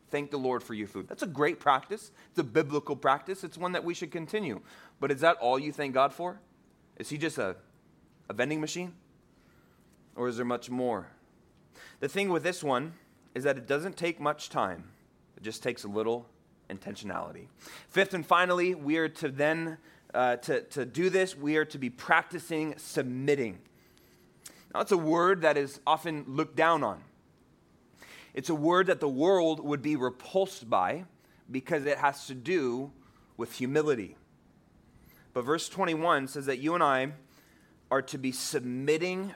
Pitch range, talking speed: 130-170 Hz, 175 wpm